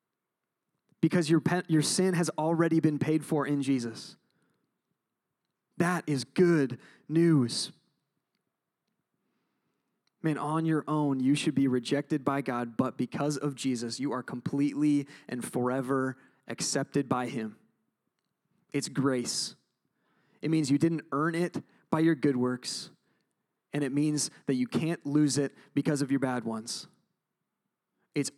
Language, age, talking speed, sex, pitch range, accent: English, 30-49, 135 wpm, male, 140-175 Hz, American